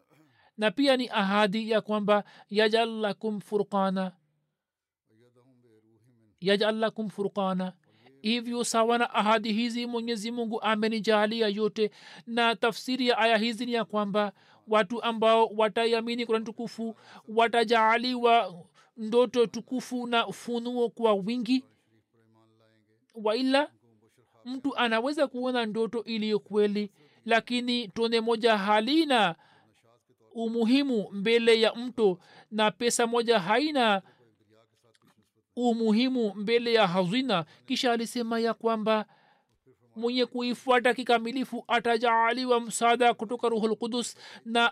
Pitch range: 205-235 Hz